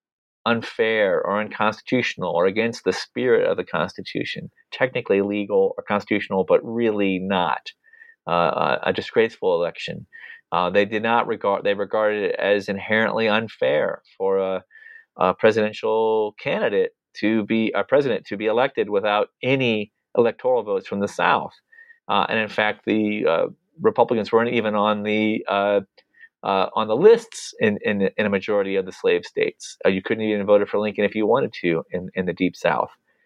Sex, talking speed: male, 165 wpm